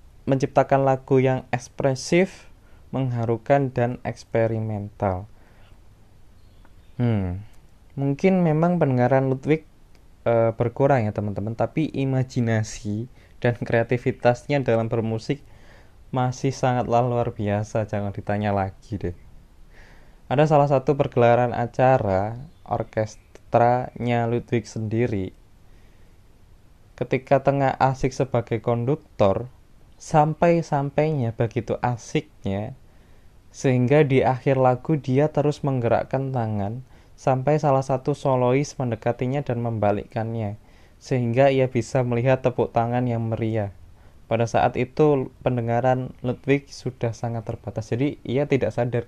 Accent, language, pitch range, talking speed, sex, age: native, Indonesian, 105-130 Hz, 100 wpm, male, 20-39